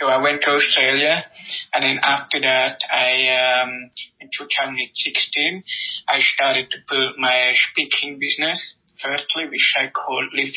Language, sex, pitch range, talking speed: English, male, 125-135 Hz, 140 wpm